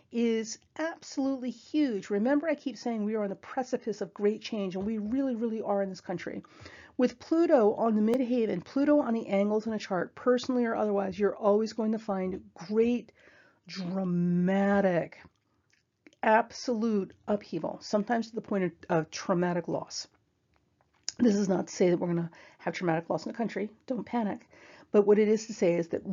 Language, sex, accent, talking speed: English, female, American, 185 wpm